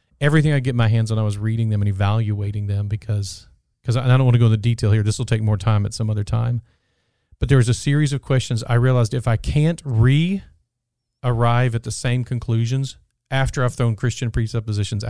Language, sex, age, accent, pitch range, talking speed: English, male, 40-59, American, 105-125 Hz, 220 wpm